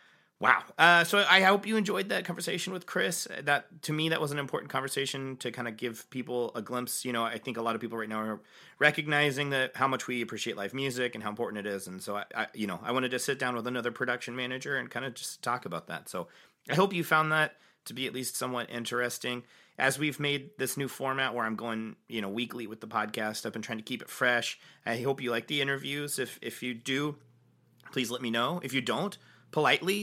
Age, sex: 30-49, male